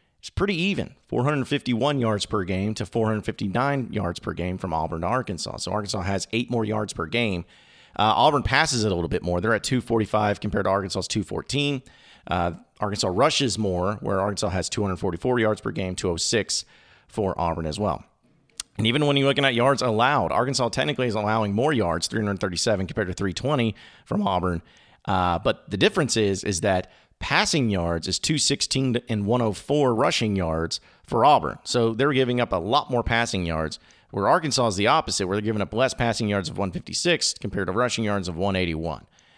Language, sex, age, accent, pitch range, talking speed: English, male, 40-59, American, 95-130 Hz, 185 wpm